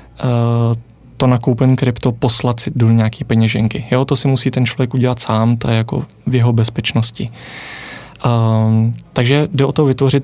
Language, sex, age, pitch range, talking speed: Czech, male, 20-39, 115-135 Hz, 165 wpm